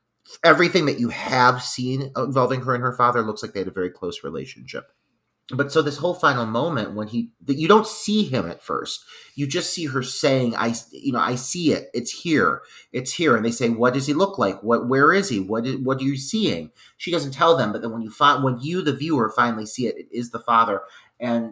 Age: 30-49